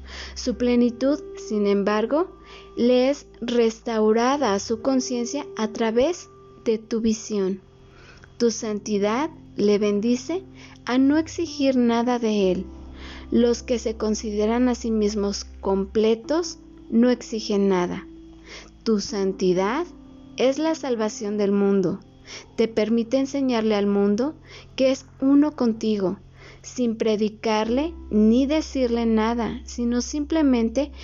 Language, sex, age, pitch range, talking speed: Spanish, female, 30-49, 205-265 Hz, 115 wpm